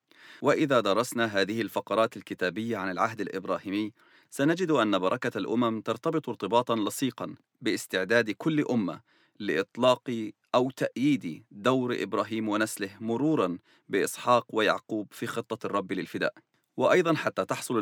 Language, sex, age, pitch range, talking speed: English, male, 40-59, 105-130 Hz, 115 wpm